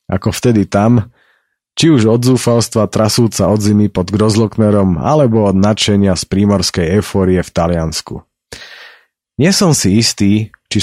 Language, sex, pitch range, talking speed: Slovak, male, 90-115 Hz, 135 wpm